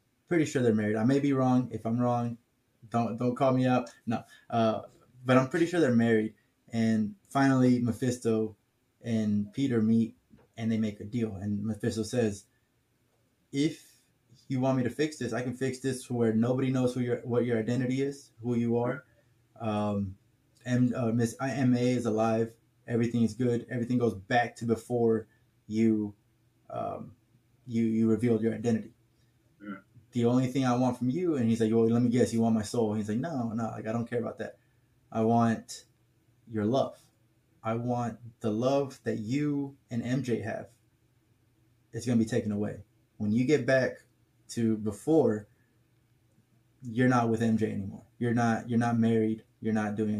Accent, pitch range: American, 115-125 Hz